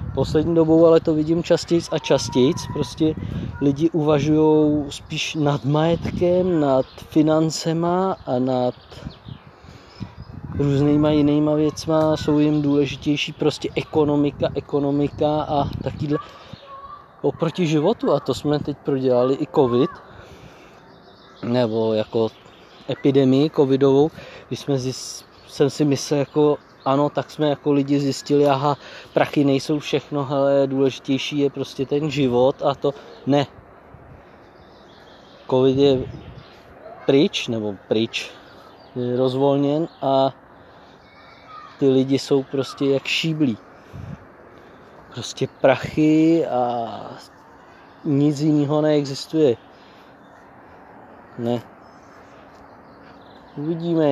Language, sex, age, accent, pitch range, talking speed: Czech, male, 20-39, native, 130-155 Hz, 95 wpm